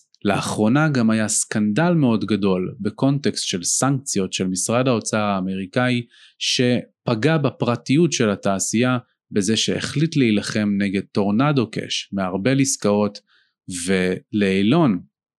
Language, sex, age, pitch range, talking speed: Hebrew, male, 30-49, 100-135 Hz, 100 wpm